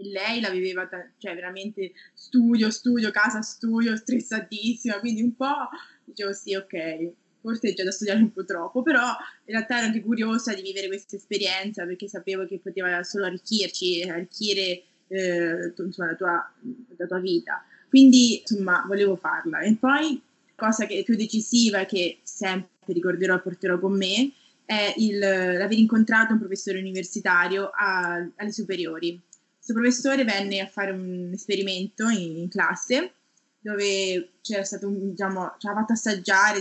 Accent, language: native, Italian